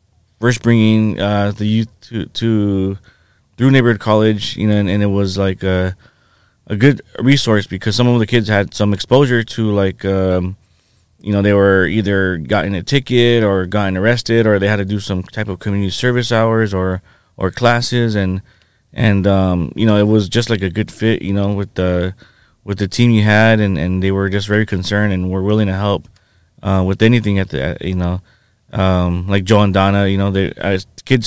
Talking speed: 205 wpm